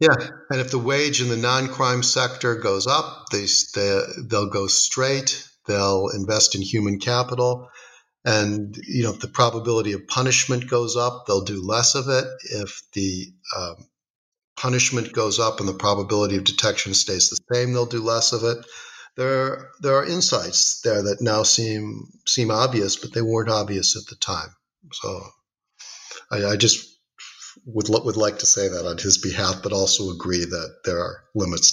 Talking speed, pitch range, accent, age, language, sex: 180 wpm, 100-125 Hz, American, 50-69, English, male